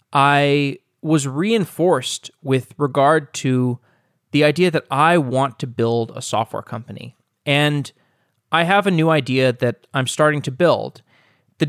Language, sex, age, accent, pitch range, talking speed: English, male, 20-39, American, 120-160 Hz, 145 wpm